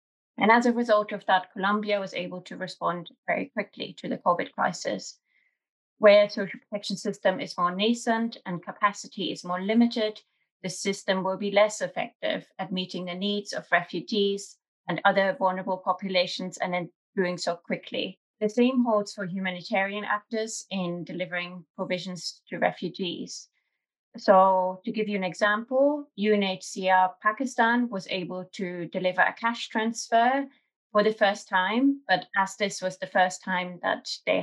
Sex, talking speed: female, 155 wpm